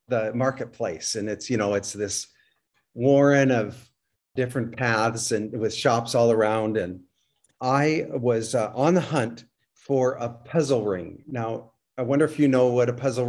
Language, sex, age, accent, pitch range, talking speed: English, male, 50-69, American, 110-135 Hz, 165 wpm